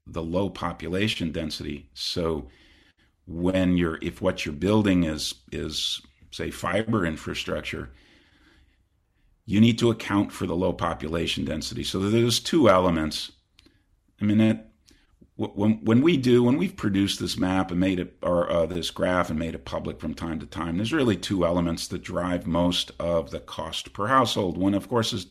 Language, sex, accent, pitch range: English, male, American, 75-95 Hz